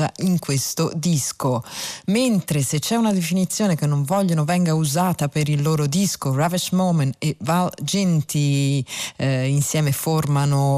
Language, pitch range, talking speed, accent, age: Italian, 145-185 Hz, 140 wpm, native, 40-59